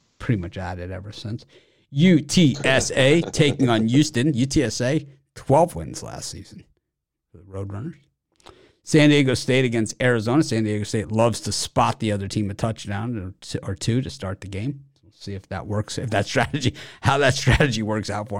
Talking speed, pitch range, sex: 175 wpm, 100-140 Hz, male